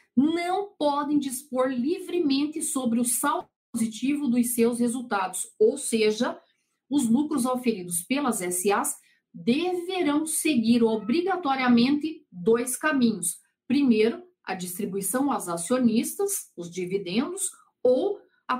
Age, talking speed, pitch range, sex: 50-69, 105 wpm, 225-310 Hz, female